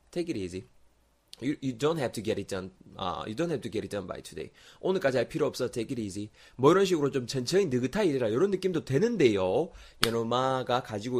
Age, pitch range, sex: 20-39, 95-135 Hz, male